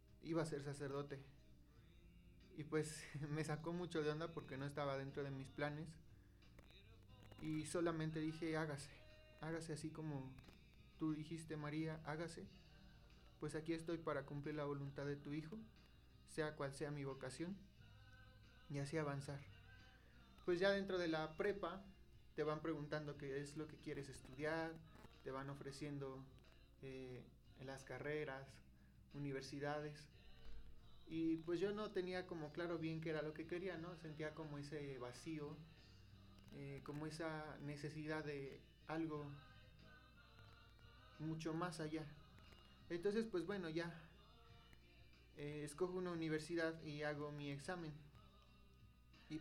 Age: 30-49